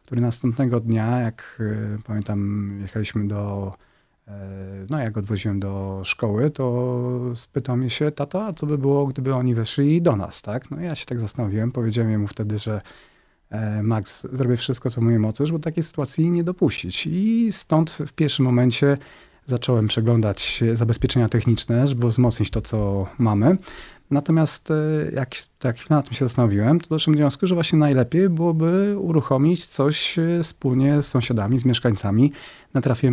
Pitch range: 115-145 Hz